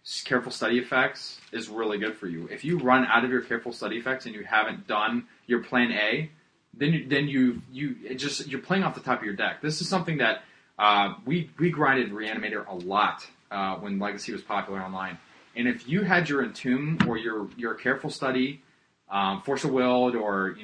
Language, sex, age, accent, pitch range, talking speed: English, male, 20-39, American, 115-135 Hz, 210 wpm